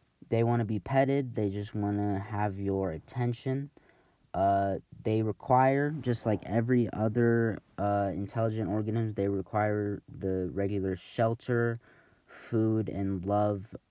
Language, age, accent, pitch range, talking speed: English, 20-39, American, 100-125 Hz, 130 wpm